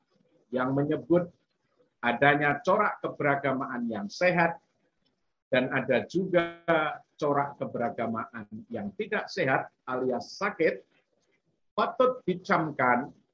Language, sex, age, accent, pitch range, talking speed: Indonesian, male, 50-69, native, 130-170 Hz, 85 wpm